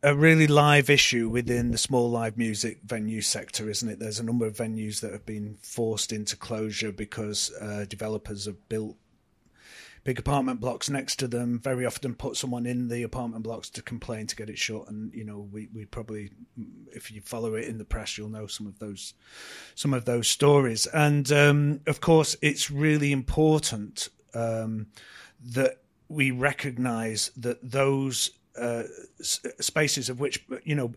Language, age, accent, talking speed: English, 30-49, British, 175 wpm